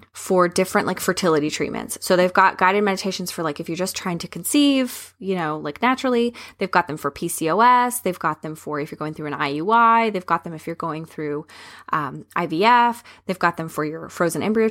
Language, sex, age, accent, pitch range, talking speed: English, female, 20-39, American, 160-225 Hz, 215 wpm